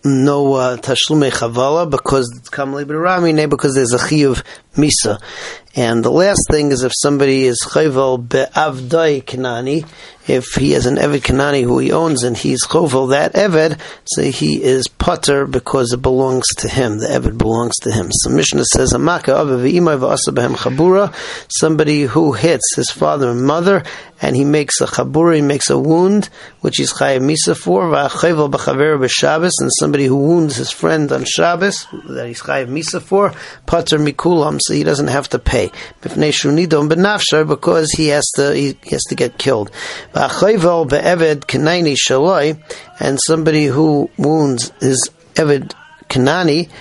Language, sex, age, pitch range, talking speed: English, male, 40-59, 130-160 Hz, 145 wpm